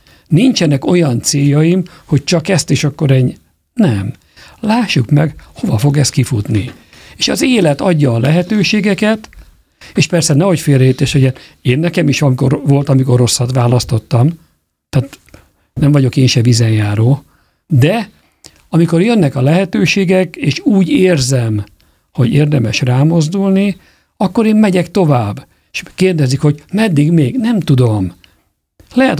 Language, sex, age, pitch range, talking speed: Hungarian, male, 50-69, 130-175 Hz, 130 wpm